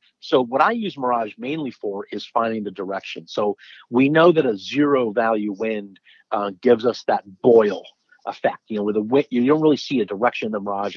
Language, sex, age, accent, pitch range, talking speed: English, male, 50-69, American, 110-135 Hz, 215 wpm